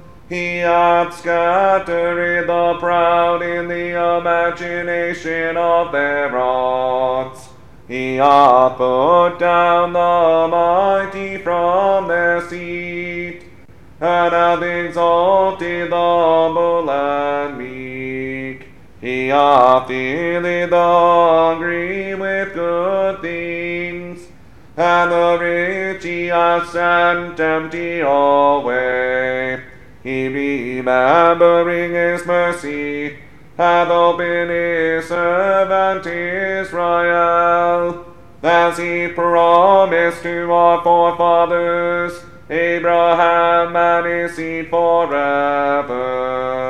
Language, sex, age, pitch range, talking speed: English, male, 30-49, 145-175 Hz, 80 wpm